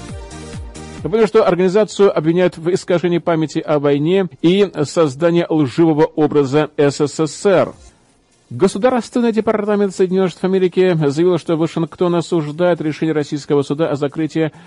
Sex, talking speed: male, 115 wpm